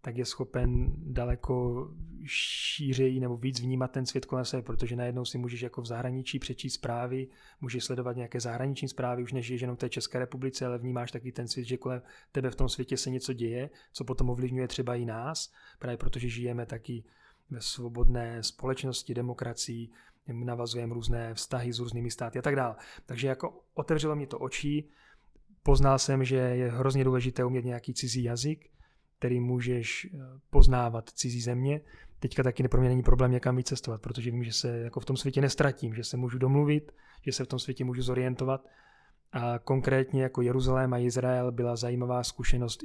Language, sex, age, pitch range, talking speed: Czech, male, 30-49, 120-130 Hz, 180 wpm